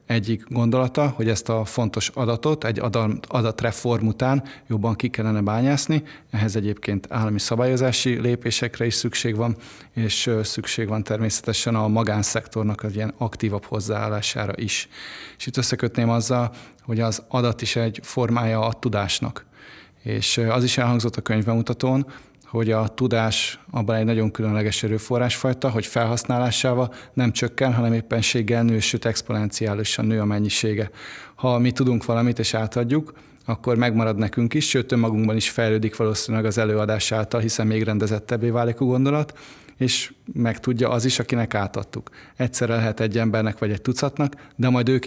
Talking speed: 150 wpm